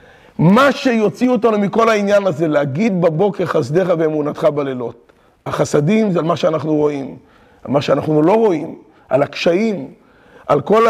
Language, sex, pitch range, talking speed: Hebrew, male, 165-210 Hz, 145 wpm